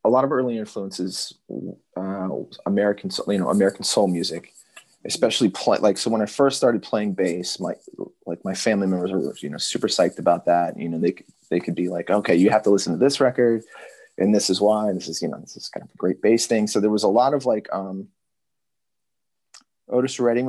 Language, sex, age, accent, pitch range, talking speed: English, male, 30-49, American, 95-110 Hz, 225 wpm